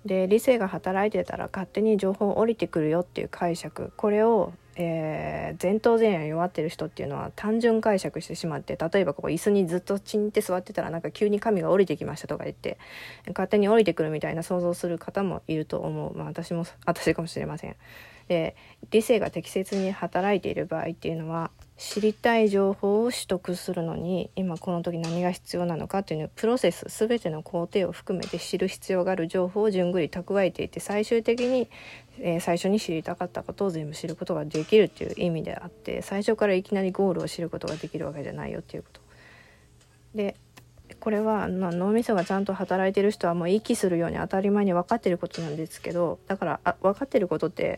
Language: Japanese